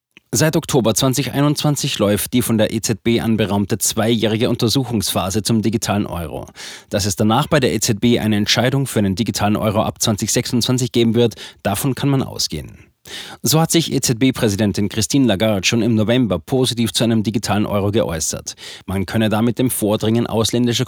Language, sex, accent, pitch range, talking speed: German, male, German, 105-125 Hz, 160 wpm